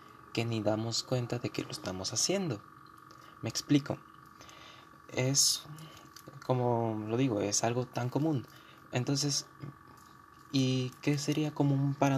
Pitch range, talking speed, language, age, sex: 110-135 Hz, 125 wpm, Spanish, 20-39, male